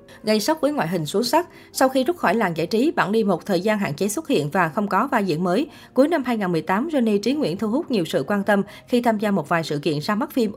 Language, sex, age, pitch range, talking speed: Vietnamese, female, 20-39, 175-235 Hz, 290 wpm